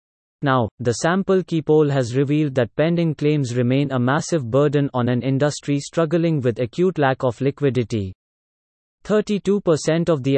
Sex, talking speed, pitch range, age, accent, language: male, 150 wpm, 125-160 Hz, 30-49, Indian, English